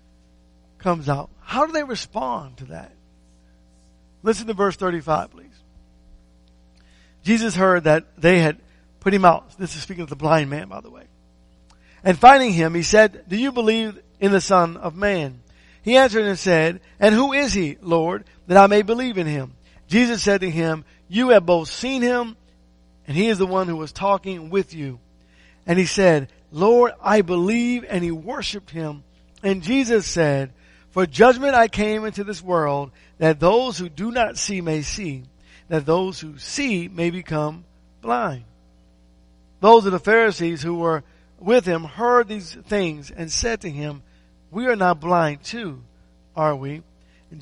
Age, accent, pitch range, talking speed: 50-69, American, 140-205 Hz, 170 wpm